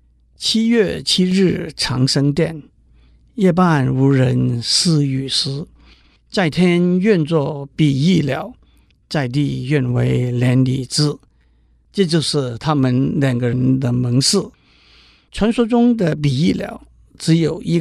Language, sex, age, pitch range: Chinese, male, 50-69, 125-160 Hz